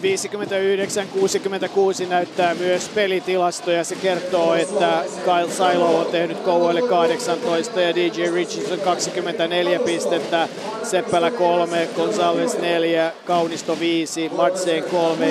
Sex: male